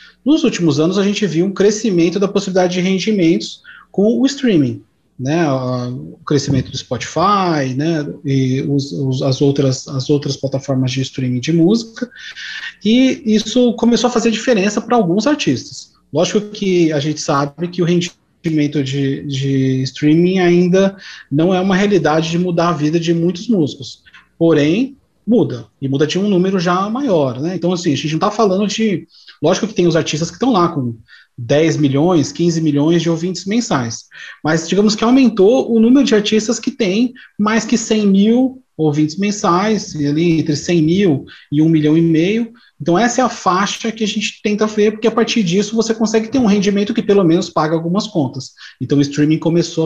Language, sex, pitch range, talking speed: Portuguese, male, 150-210 Hz, 180 wpm